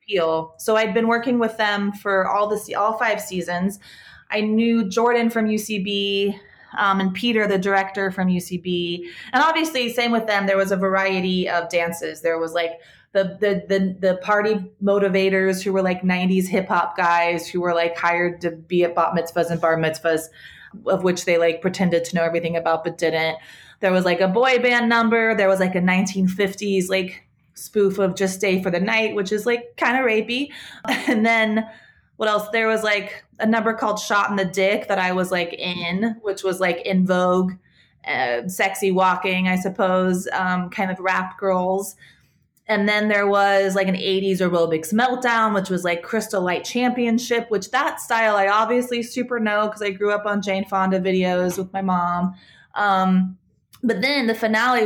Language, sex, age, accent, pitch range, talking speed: English, female, 20-39, American, 180-215 Hz, 190 wpm